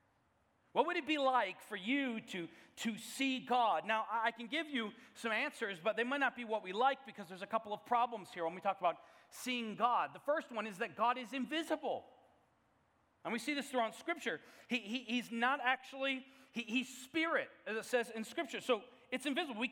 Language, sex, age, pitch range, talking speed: English, male, 40-59, 225-285 Hz, 215 wpm